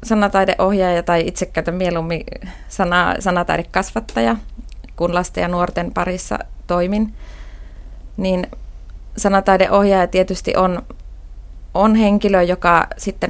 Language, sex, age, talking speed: Finnish, female, 20-39, 90 wpm